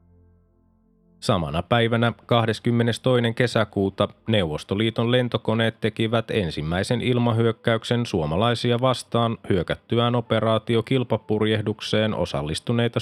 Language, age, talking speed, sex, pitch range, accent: Finnish, 20-39, 65 wpm, male, 110-120 Hz, native